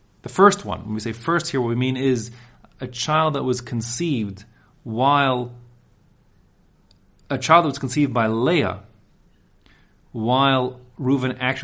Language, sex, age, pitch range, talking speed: English, male, 30-49, 110-145 Hz, 145 wpm